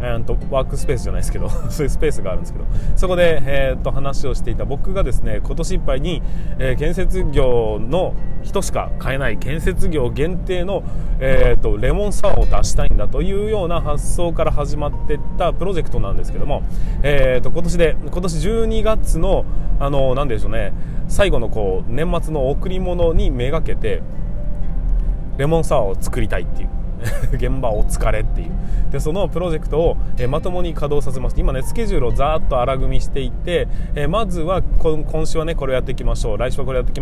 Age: 20-39